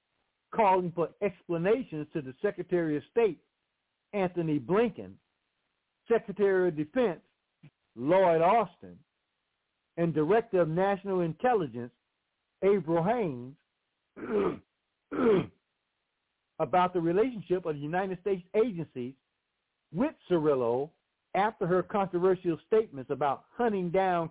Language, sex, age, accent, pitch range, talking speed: English, male, 60-79, American, 160-215 Hz, 95 wpm